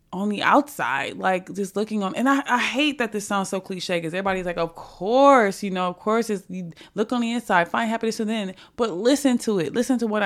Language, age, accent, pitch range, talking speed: English, 20-39, American, 170-220 Hz, 235 wpm